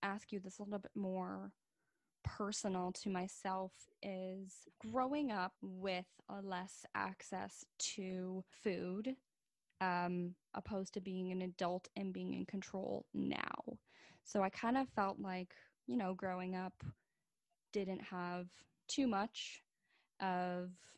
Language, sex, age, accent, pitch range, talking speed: English, female, 10-29, American, 185-210 Hz, 130 wpm